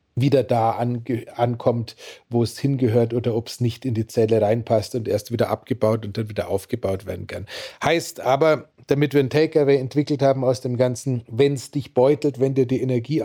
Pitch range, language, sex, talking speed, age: 115-135 Hz, German, male, 200 wpm, 40-59